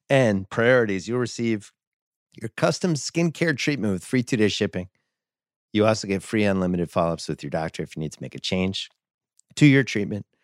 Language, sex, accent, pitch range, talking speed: English, male, American, 95-130 Hz, 180 wpm